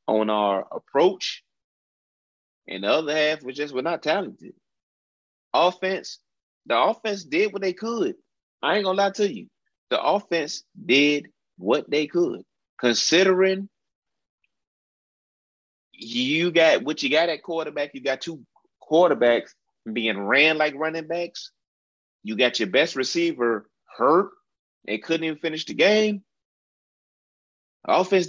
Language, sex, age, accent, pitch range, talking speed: English, male, 30-49, American, 110-165 Hz, 130 wpm